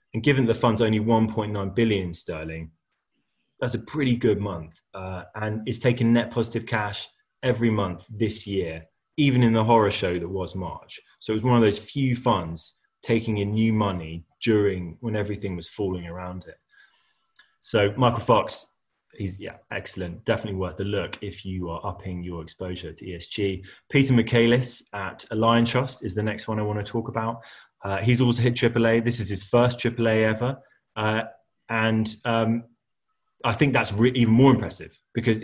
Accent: British